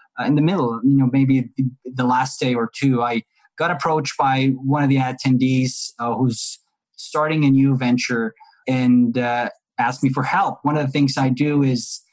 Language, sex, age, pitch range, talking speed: English, male, 20-39, 120-140 Hz, 195 wpm